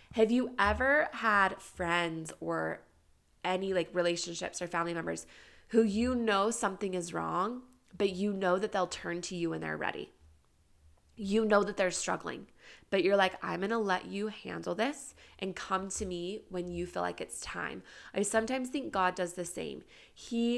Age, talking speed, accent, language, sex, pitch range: 20-39, 180 wpm, American, English, female, 175-220 Hz